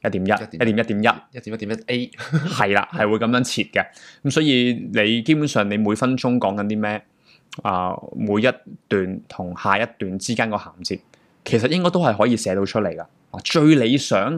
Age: 20-39